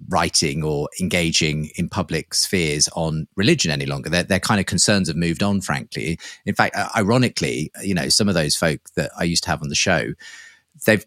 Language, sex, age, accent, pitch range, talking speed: English, male, 30-49, British, 85-105 Hz, 200 wpm